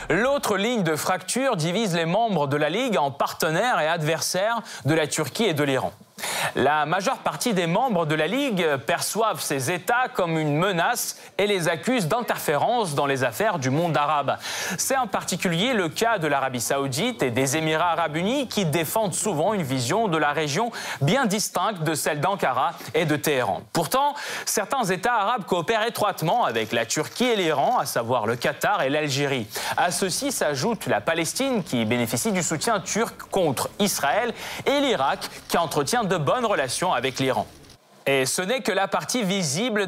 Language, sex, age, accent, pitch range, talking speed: French, male, 30-49, French, 155-220 Hz, 180 wpm